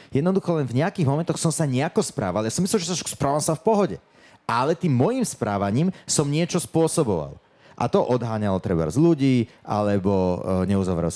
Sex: male